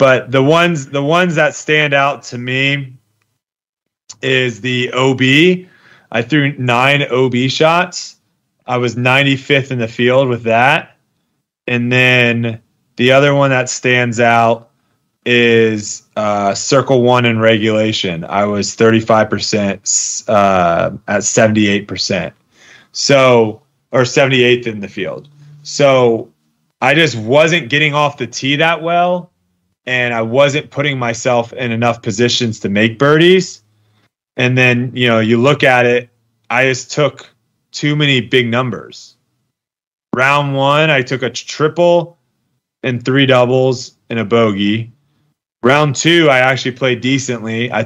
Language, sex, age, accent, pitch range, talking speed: English, male, 30-49, American, 115-140 Hz, 135 wpm